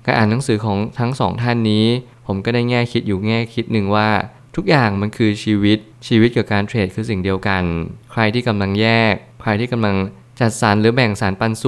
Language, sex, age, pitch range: Thai, male, 20-39, 100-120 Hz